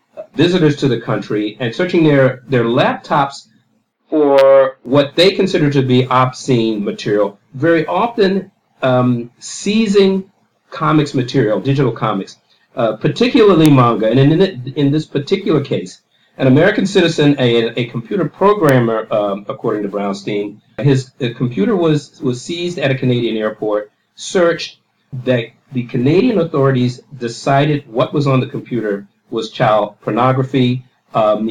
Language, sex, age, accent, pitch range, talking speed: English, male, 50-69, American, 115-150 Hz, 135 wpm